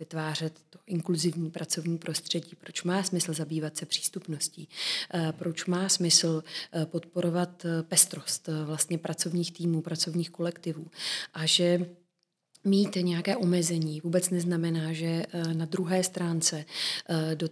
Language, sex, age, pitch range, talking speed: Czech, female, 30-49, 160-175 Hz, 115 wpm